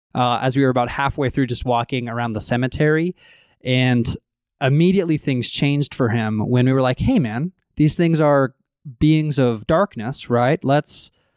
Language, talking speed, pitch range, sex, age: English, 170 wpm, 120-150 Hz, male, 20-39